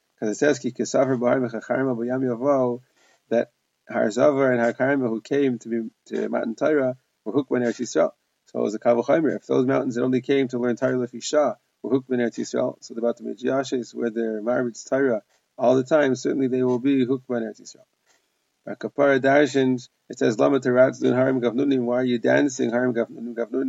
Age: 30-49